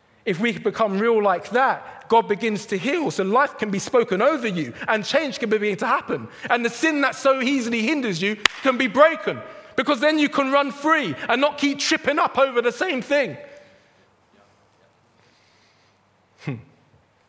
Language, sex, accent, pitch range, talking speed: English, male, British, 165-250 Hz, 175 wpm